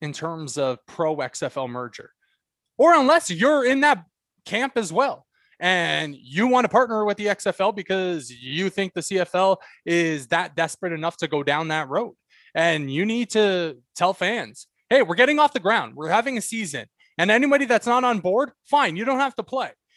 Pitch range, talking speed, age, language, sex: 155-235 Hz, 190 wpm, 20-39, English, male